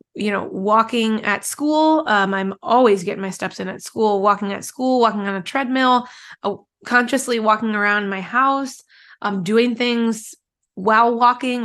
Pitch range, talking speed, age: 205-245 Hz, 165 wpm, 20-39